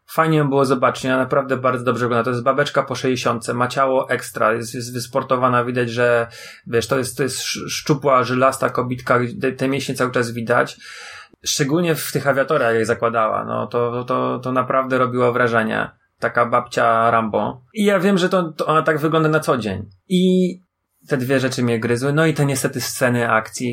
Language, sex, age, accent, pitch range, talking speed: Polish, male, 30-49, native, 120-145 Hz, 190 wpm